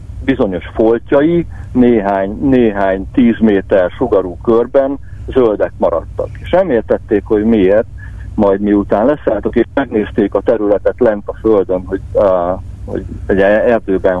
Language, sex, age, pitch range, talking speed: Hungarian, male, 60-79, 95-115 Hz, 125 wpm